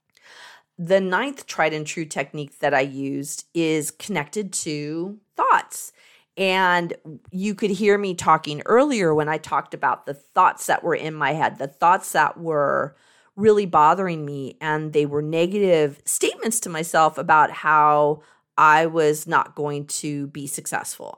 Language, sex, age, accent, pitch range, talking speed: English, female, 40-59, American, 155-210 Hz, 155 wpm